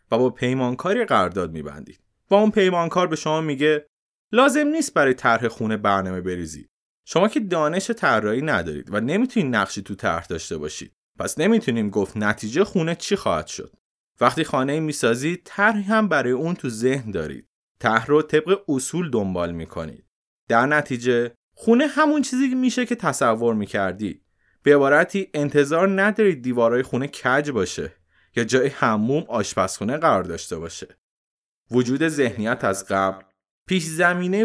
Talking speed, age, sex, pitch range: 145 wpm, 30-49, male, 115-180 Hz